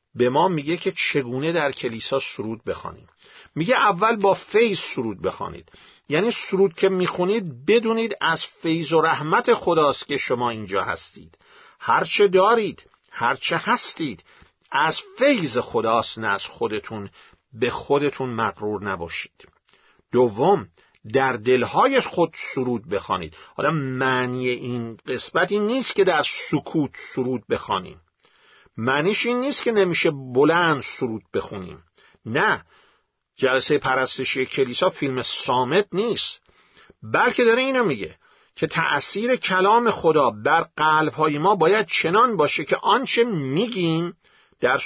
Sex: male